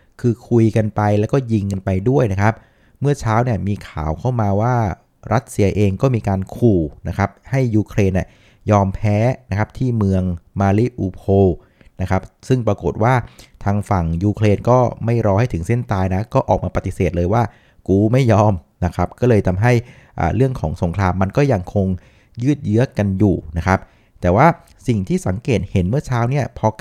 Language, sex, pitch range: Thai, male, 95-120 Hz